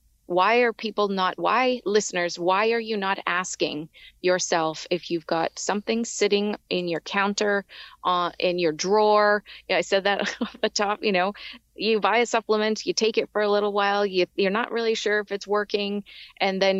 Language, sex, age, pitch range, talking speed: English, female, 30-49, 175-205 Hz, 195 wpm